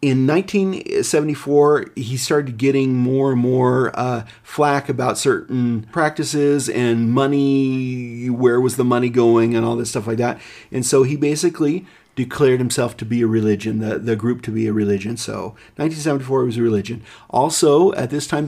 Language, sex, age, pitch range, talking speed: English, male, 40-59, 115-135 Hz, 170 wpm